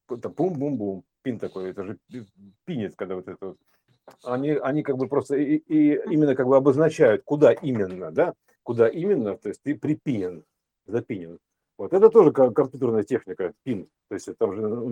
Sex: male